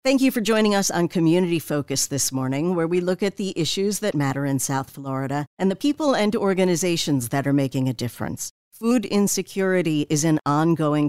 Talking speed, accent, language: 195 wpm, American, English